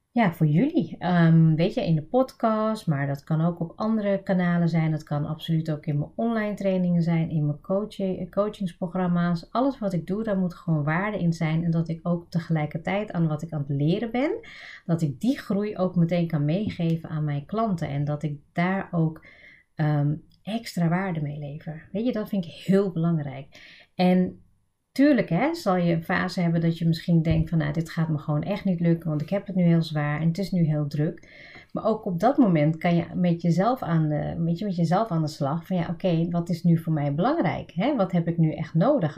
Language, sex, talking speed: Dutch, female, 225 wpm